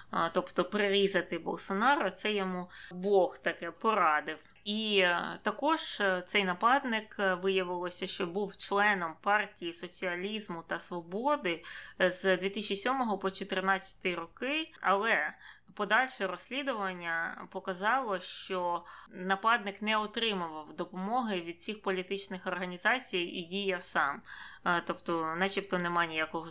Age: 20-39